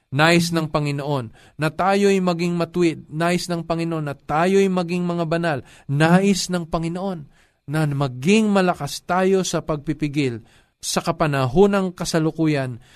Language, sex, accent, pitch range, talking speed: Filipino, male, native, 115-165 Hz, 135 wpm